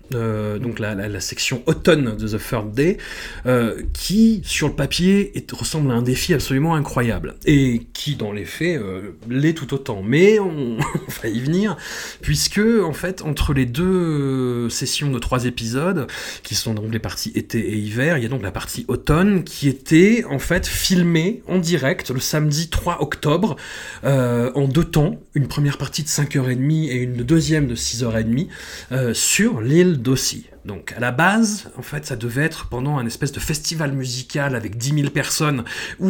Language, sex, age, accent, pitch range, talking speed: French, male, 30-49, French, 120-165 Hz, 185 wpm